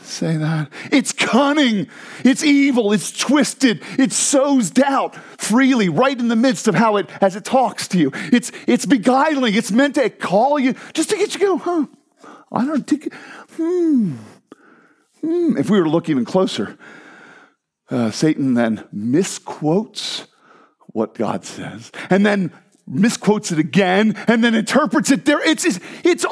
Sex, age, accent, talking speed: male, 40-59, American, 160 wpm